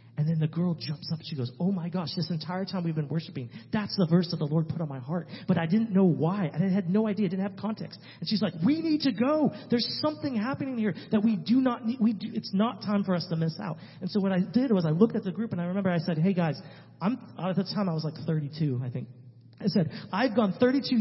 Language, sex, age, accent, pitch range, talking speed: English, male, 40-59, American, 145-195 Hz, 275 wpm